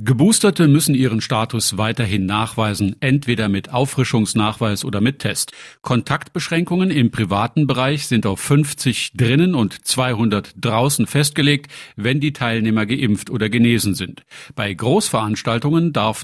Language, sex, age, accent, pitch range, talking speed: German, male, 50-69, German, 110-140 Hz, 125 wpm